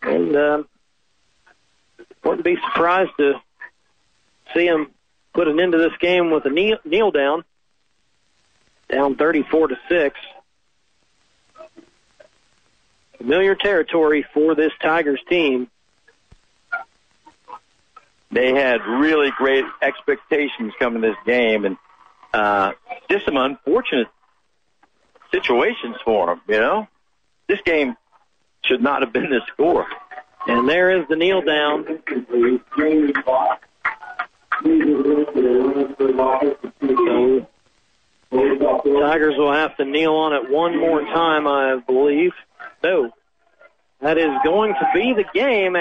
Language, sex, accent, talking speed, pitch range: English, male, American, 105 wpm, 150-245 Hz